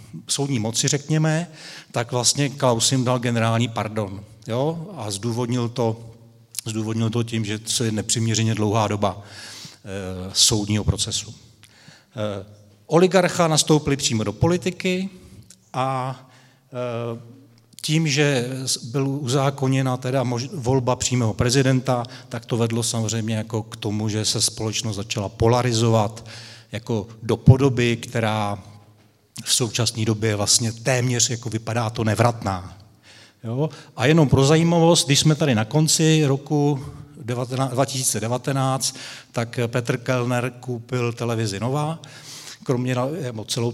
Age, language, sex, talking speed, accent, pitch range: 40-59, Czech, male, 120 wpm, native, 110-135 Hz